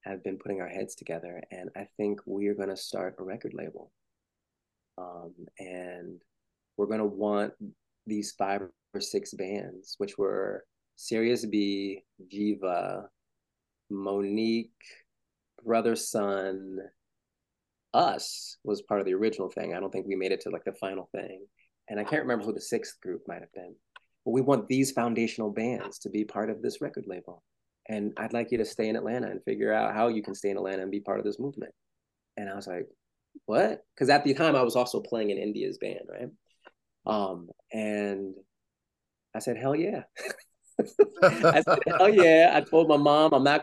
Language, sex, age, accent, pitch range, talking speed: English, male, 30-49, American, 100-145 Hz, 180 wpm